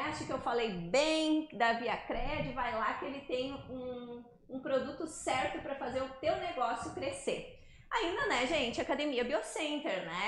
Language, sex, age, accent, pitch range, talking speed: Portuguese, female, 20-39, Brazilian, 240-330 Hz, 170 wpm